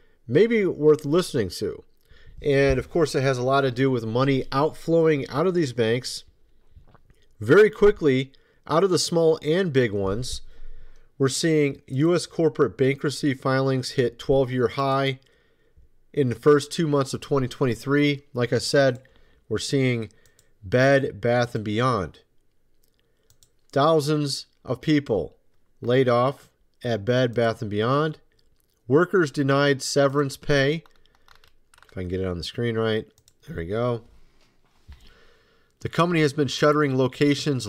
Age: 40-59